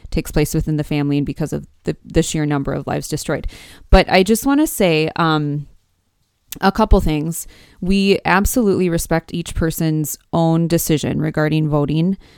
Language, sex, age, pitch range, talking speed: English, female, 20-39, 150-180 Hz, 160 wpm